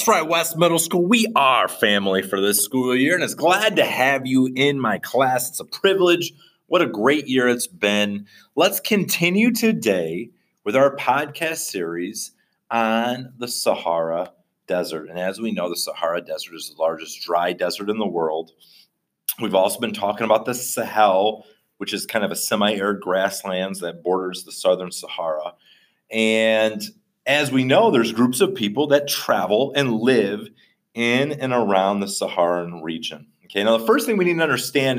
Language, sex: English, male